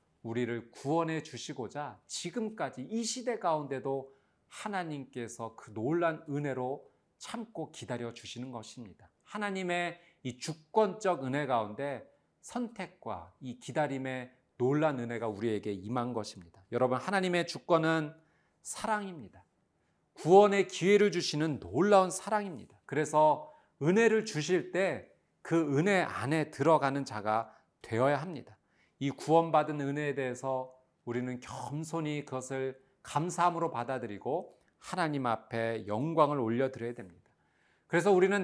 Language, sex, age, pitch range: Korean, male, 40-59, 120-165 Hz